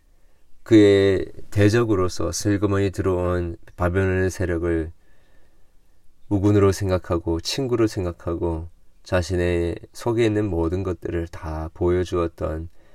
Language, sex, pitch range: Korean, male, 85-105 Hz